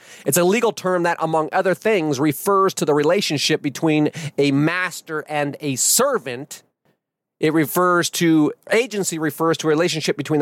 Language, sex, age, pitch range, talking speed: English, male, 40-59, 140-175 Hz, 155 wpm